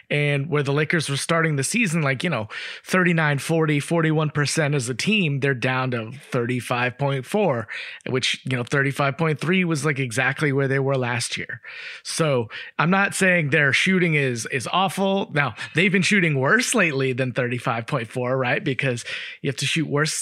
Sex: male